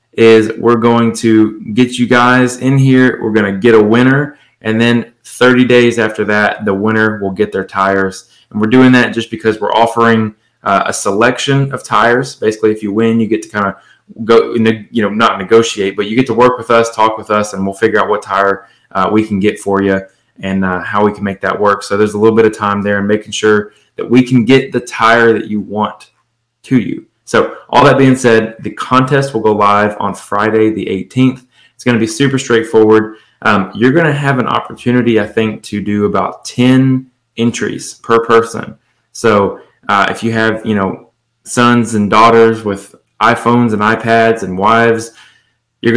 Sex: male